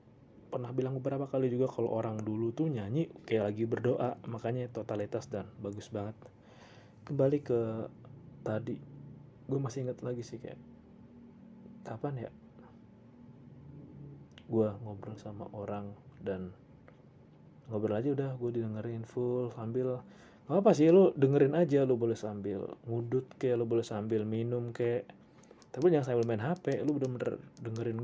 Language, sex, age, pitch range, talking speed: Indonesian, male, 20-39, 110-130 Hz, 140 wpm